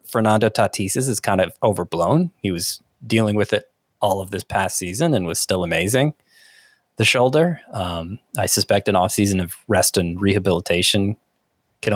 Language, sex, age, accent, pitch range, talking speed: English, male, 20-39, American, 95-130 Hz, 160 wpm